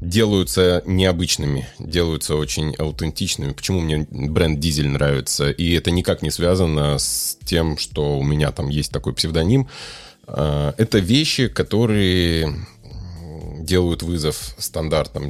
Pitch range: 75-95 Hz